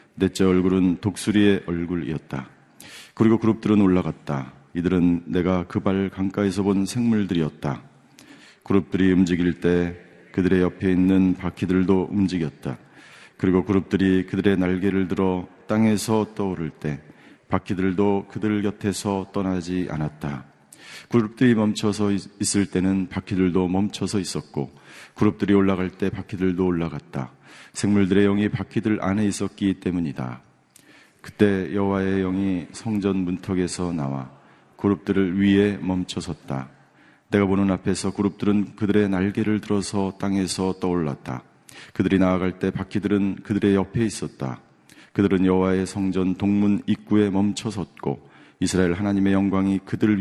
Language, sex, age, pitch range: Korean, male, 40-59, 90-100 Hz